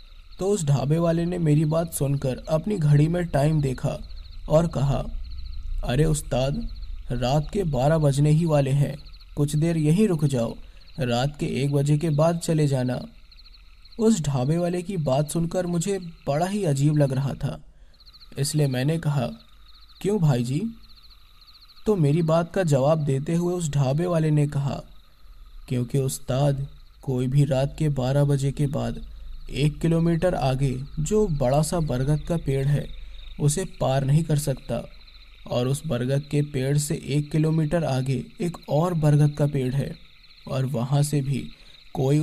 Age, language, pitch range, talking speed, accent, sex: 20-39, Hindi, 130-155 Hz, 160 wpm, native, male